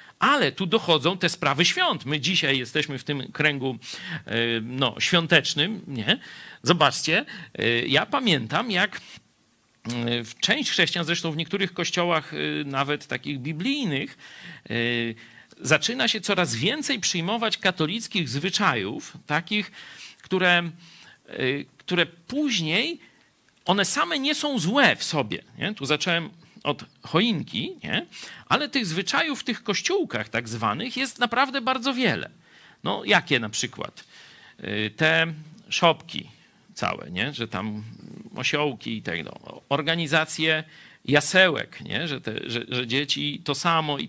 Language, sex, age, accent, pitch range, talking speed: Polish, male, 50-69, native, 125-185 Hz, 120 wpm